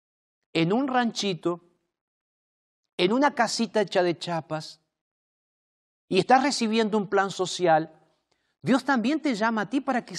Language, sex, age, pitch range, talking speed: Spanish, male, 50-69, 195-270 Hz, 135 wpm